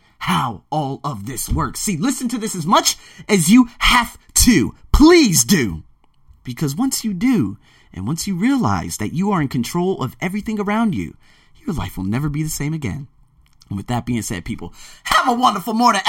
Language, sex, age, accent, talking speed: English, male, 30-49, American, 195 wpm